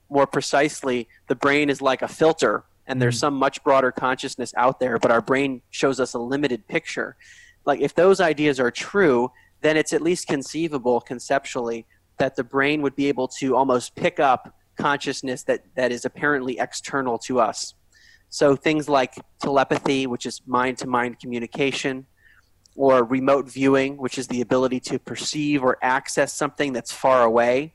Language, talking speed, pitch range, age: English, 165 wpm, 125-145 Hz, 30-49